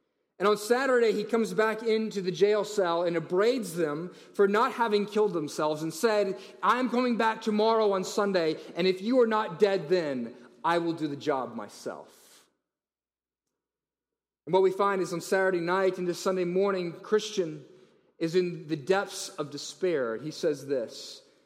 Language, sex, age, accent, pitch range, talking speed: English, male, 30-49, American, 160-215 Hz, 175 wpm